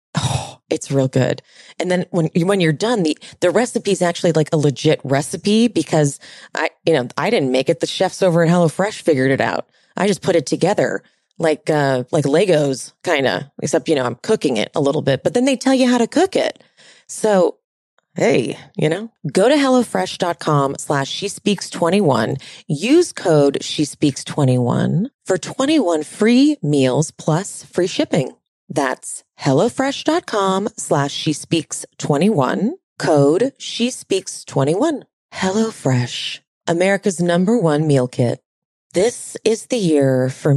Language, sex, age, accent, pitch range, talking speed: English, female, 30-49, American, 140-205 Hz, 155 wpm